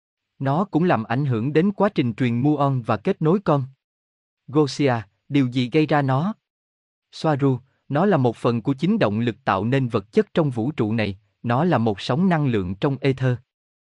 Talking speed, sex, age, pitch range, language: 195 wpm, male, 20-39, 115-155 Hz, Vietnamese